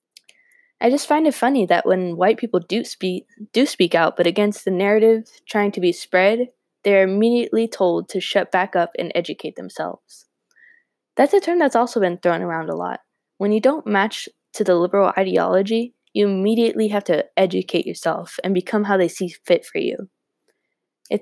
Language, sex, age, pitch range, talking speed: English, female, 10-29, 180-220 Hz, 180 wpm